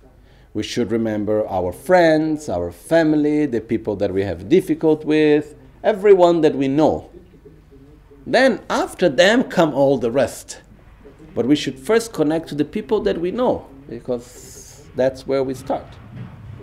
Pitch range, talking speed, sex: 115-155 Hz, 150 wpm, male